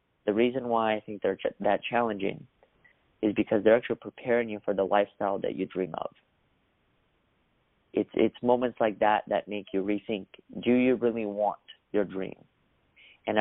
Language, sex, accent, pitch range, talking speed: English, male, American, 105-120 Hz, 165 wpm